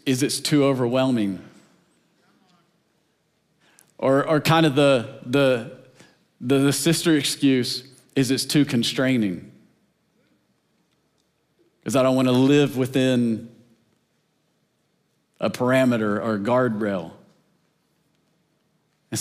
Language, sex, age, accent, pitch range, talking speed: English, male, 40-59, American, 120-150 Hz, 95 wpm